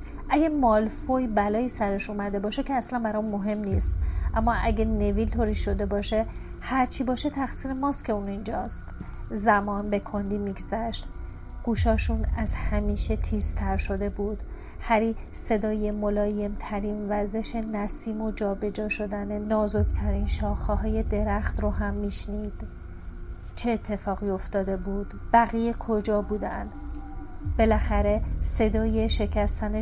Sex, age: female, 40-59